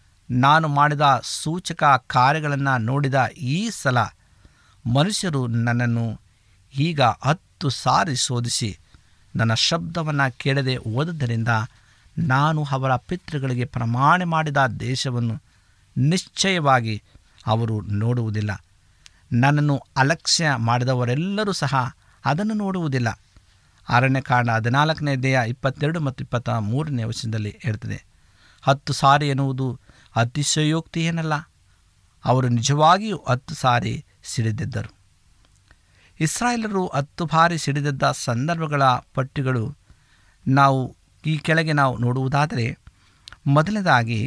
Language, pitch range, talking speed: Kannada, 115-150 Hz, 85 wpm